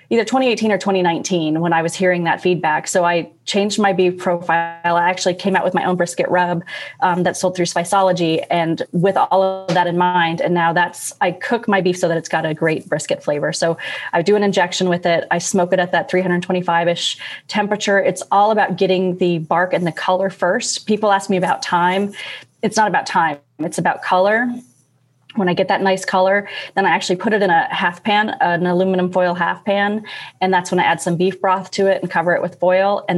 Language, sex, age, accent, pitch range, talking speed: English, female, 30-49, American, 170-195 Hz, 225 wpm